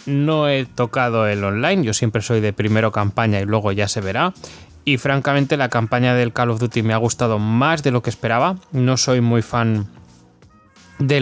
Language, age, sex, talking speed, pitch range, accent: Spanish, 20-39, male, 200 wpm, 105-130 Hz, Spanish